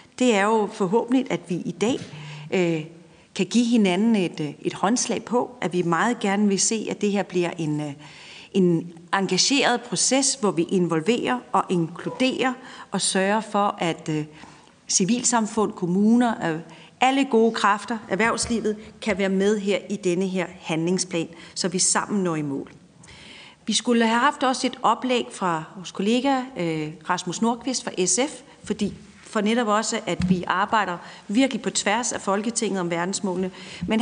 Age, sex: 40-59, female